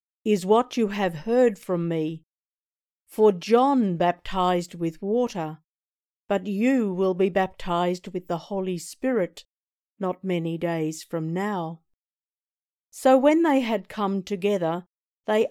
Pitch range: 175-220 Hz